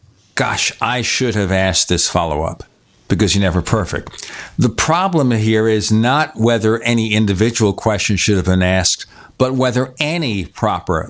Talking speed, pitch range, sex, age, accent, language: 150 wpm, 100-130 Hz, male, 60-79, American, English